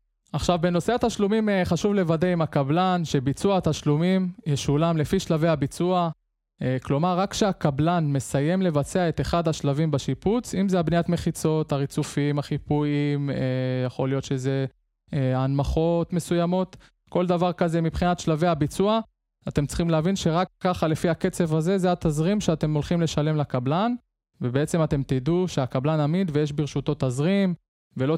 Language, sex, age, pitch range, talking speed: Hebrew, male, 20-39, 140-175 Hz, 130 wpm